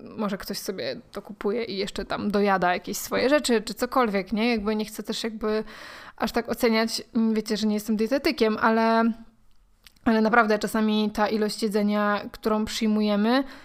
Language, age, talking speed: Polish, 20-39, 165 wpm